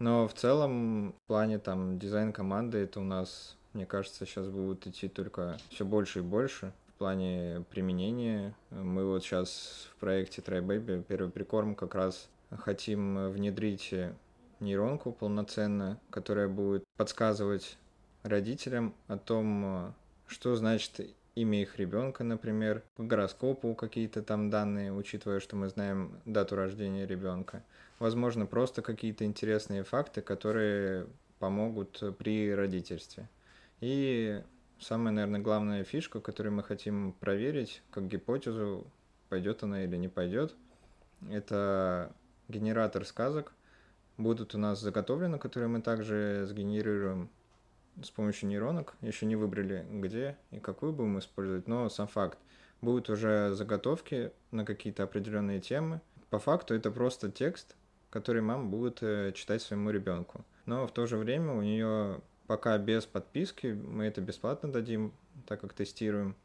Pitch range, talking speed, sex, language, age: 95-110 Hz, 130 wpm, male, Russian, 20-39